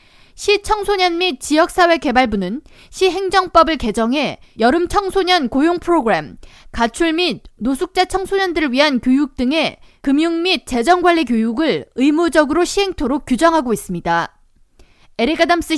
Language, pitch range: Korean, 250-345 Hz